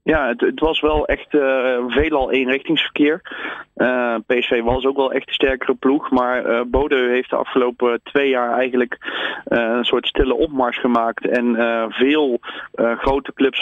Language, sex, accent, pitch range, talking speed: Dutch, male, Dutch, 115-130 Hz, 170 wpm